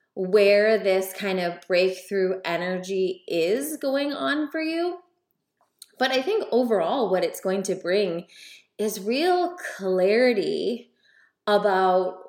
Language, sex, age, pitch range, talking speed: English, female, 20-39, 180-235 Hz, 115 wpm